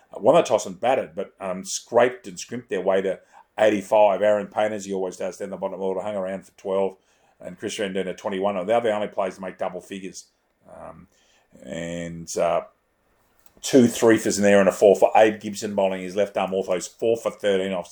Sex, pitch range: male, 95-105 Hz